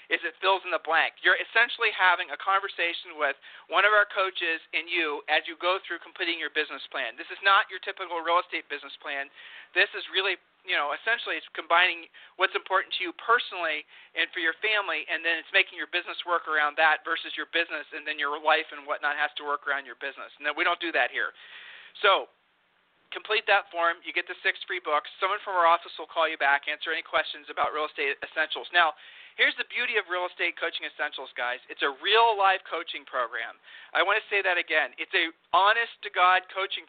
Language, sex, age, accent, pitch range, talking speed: English, male, 40-59, American, 155-205 Hz, 215 wpm